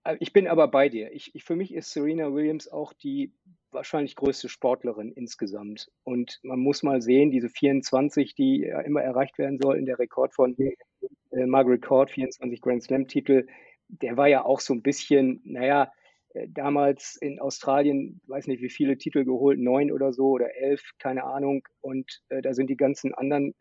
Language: German